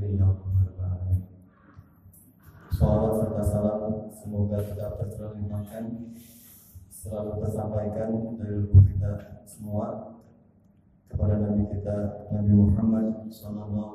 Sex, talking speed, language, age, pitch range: male, 75 wpm, Indonesian, 20-39, 100-105 Hz